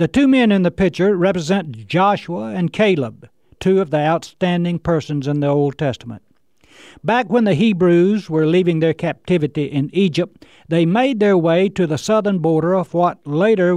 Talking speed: 175 wpm